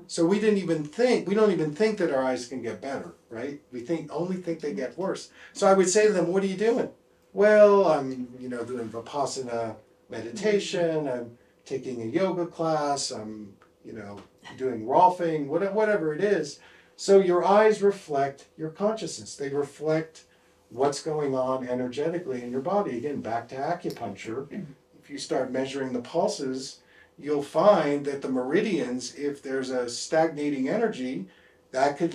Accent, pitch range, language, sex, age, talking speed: American, 125-170 Hz, English, male, 50-69, 170 wpm